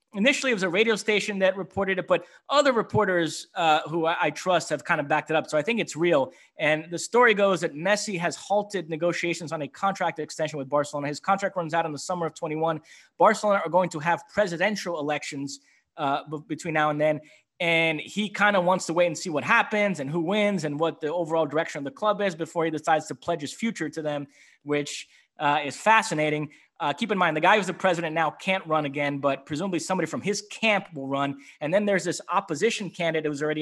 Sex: male